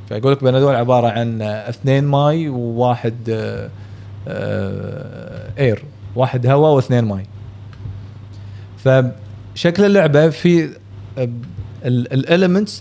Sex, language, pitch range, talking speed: male, Arabic, 105-145 Hz, 85 wpm